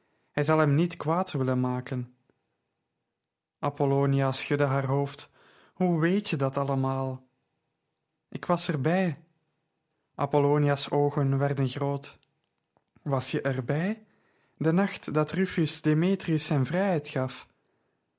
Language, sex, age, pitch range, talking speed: Dutch, male, 20-39, 140-160 Hz, 110 wpm